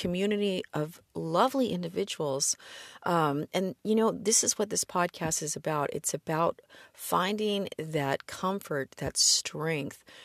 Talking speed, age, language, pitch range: 130 wpm, 40-59, English, 150-190 Hz